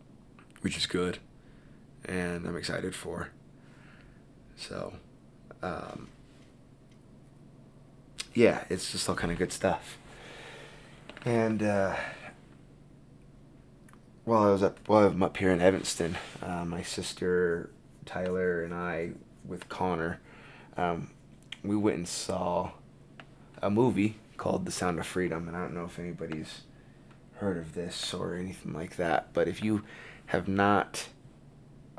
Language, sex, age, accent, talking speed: English, male, 20-39, American, 125 wpm